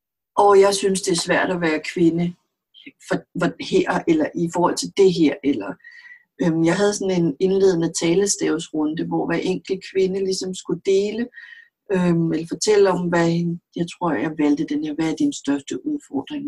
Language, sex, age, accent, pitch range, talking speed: Danish, female, 60-79, native, 170-235 Hz, 180 wpm